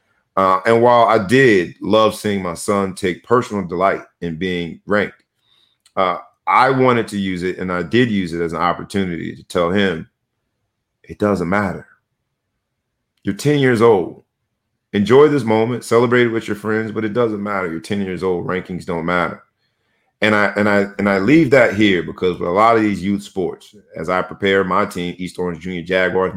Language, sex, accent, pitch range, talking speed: English, male, American, 90-115 Hz, 190 wpm